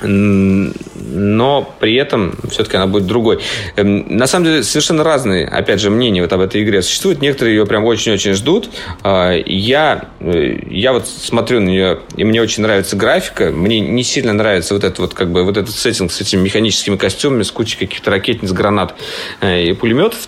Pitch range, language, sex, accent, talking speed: 95-120 Hz, Russian, male, native, 165 wpm